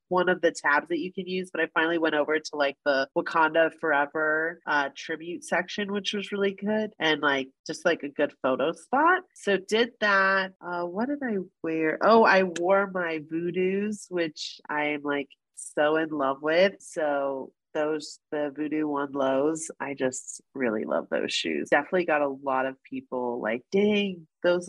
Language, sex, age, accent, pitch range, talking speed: English, female, 30-49, American, 140-185 Hz, 180 wpm